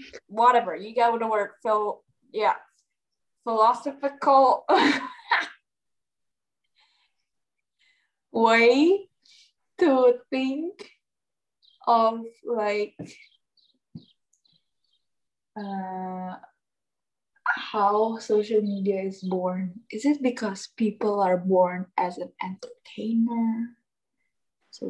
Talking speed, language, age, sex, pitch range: 70 wpm, Indonesian, 20-39, female, 190-255 Hz